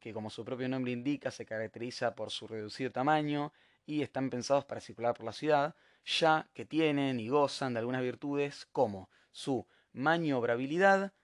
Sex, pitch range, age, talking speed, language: male, 120-155 Hz, 20-39, 165 wpm, Spanish